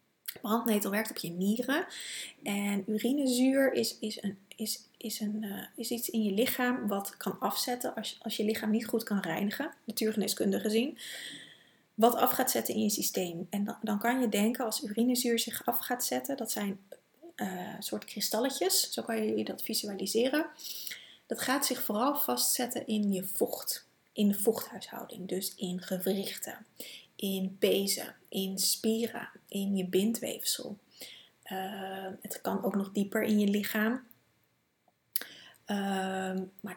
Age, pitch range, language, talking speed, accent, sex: 30-49, 195-230 Hz, Dutch, 145 wpm, Dutch, female